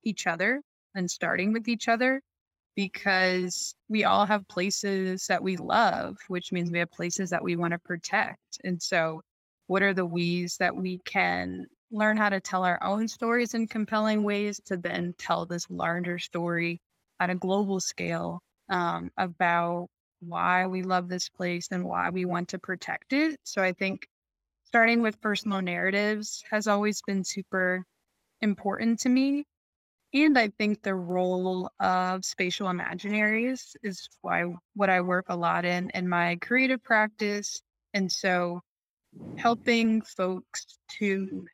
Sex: female